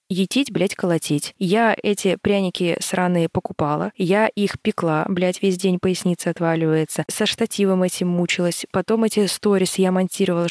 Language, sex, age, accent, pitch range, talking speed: Russian, female, 20-39, native, 175-220 Hz, 145 wpm